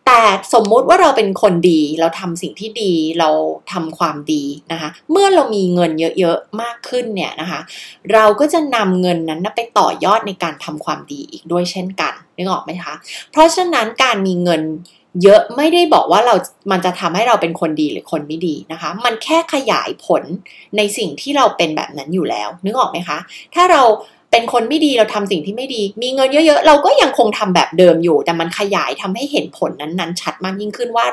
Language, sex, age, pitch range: Thai, female, 20-39, 165-235 Hz